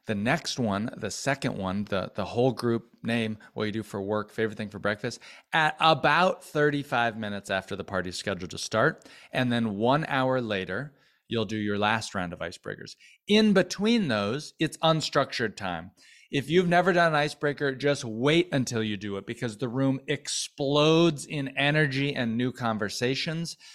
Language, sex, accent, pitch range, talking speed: English, male, American, 110-150 Hz, 175 wpm